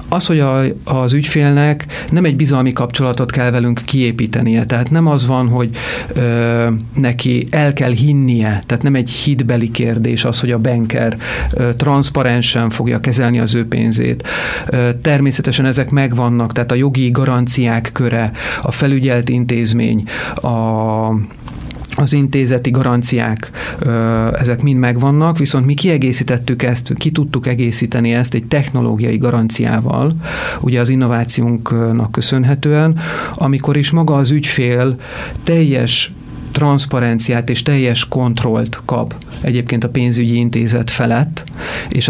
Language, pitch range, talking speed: Hungarian, 120-140 Hz, 120 wpm